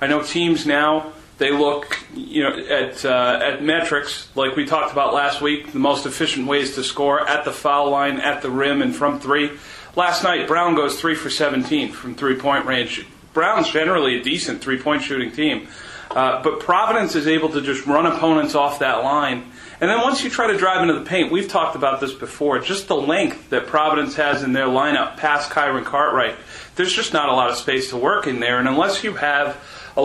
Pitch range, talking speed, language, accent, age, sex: 135-160 Hz, 210 wpm, English, American, 40-59, male